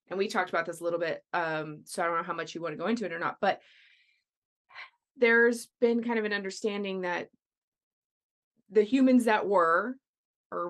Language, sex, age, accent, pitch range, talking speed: English, female, 20-39, American, 170-215 Hz, 200 wpm